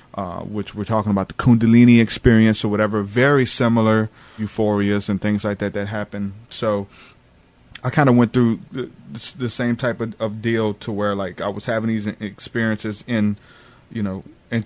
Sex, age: male, 20-39